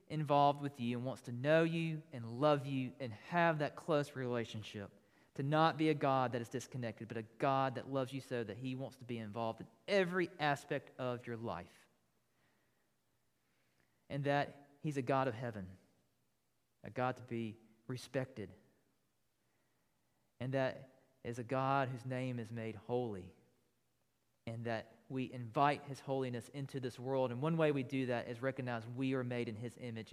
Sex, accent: male, American